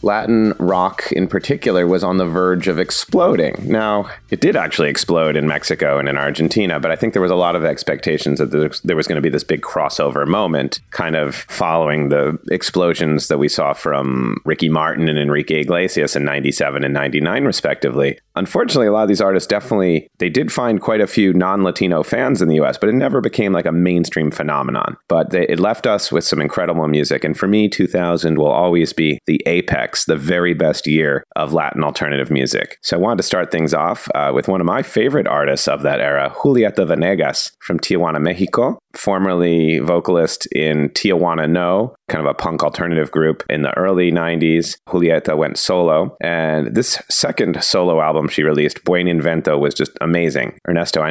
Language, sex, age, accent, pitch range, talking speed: English, male, 30-49, American, 75-90 Hz, 190 wpm